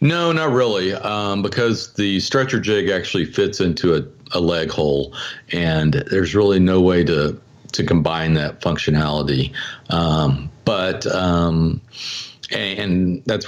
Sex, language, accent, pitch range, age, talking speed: male, English, American, 80-105 Hz, 50-69, 140 wpm